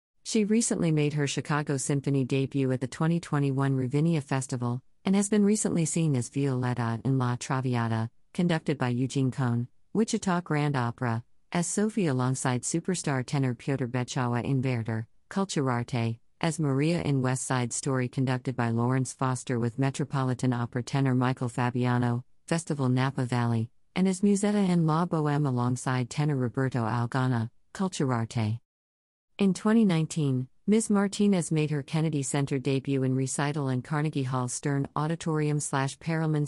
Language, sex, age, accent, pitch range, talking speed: English, female, 50-69, American, 125-155 Hz, 140 wpm